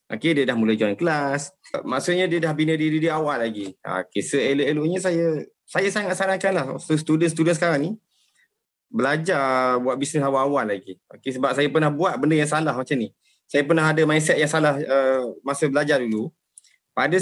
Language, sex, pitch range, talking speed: Malay, male, 130-180 Hz, 180 wpm